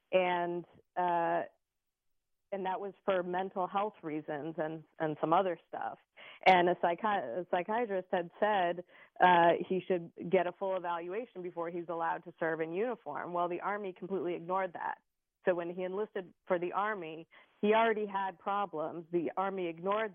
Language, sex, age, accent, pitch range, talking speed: English, female, 30-49, American, 165-185 Hz, 165 wpm